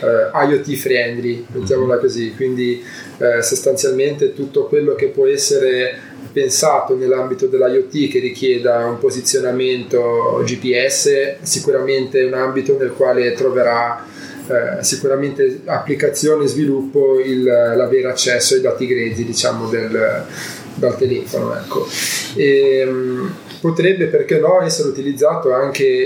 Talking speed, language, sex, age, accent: 120 wpm, Italian, male, 20-39, native